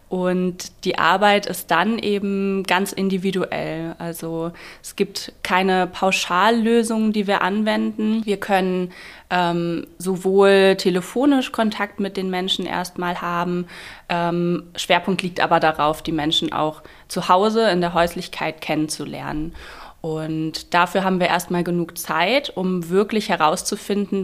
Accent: German